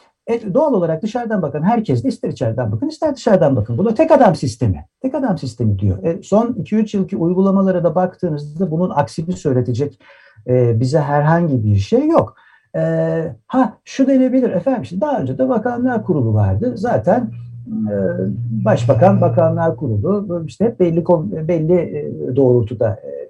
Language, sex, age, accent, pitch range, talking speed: Turkish, male, 60-79, native, 120-190 Hz, 150 wpm